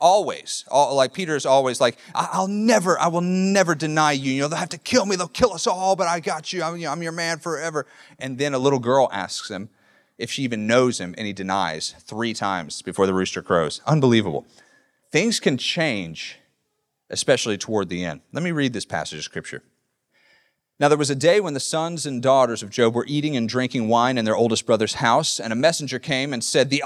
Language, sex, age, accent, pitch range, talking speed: English, male, 30-49, American, 130-180 Hz, 220 wpm